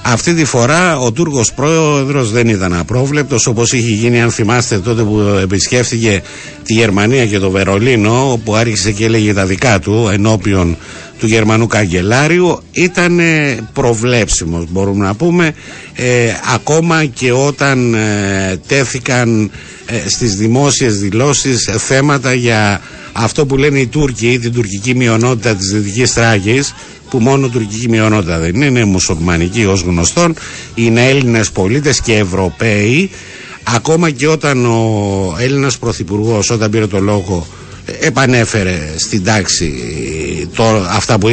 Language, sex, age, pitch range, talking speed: Greek, male, 60-79, 105-135 Hz, 135 wpm